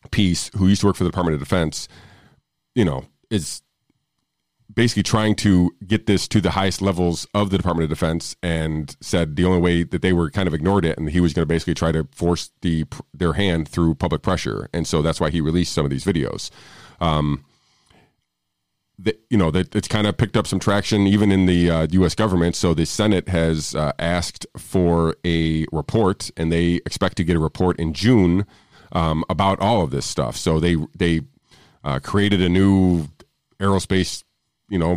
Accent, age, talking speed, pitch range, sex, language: American, 40-59, 200 wpm, 80-100 Hz, male, English